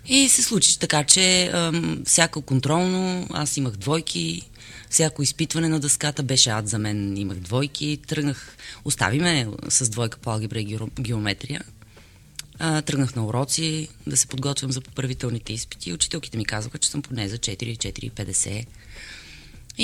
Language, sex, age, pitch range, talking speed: Bulgarian, female, 20-39, 115-155 Hz, 140 wpm